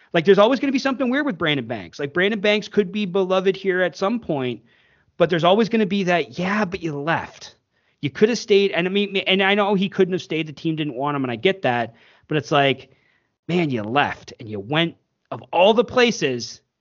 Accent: American